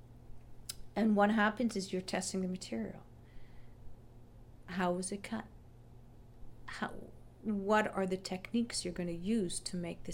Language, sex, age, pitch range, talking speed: English, female, 50-69, 180-230 Hz, 140 wpm